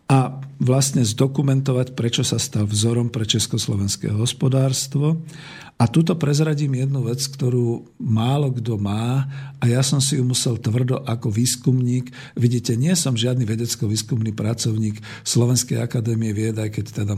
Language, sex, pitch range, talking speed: Slovak, male, 115-140 Hz, 135 wpm